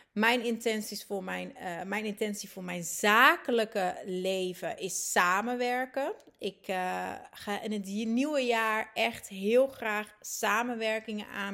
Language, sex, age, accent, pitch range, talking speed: Dutch, female, 30-49, Dutch, 190-235 Hz, 115 wpm